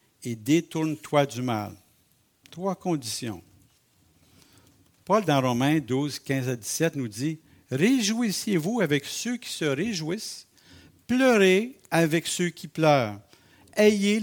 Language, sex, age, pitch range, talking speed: French, male, 60-79, 120-155 Hz, 125 wpm